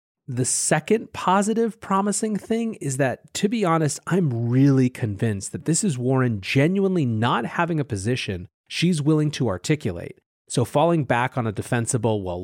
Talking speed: 160 wpm